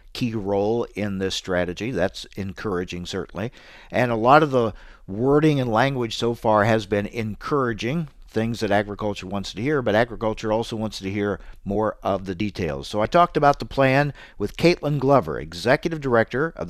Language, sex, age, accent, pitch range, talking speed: English, male, 50-69, American, 100-125 Hz, 175 wpm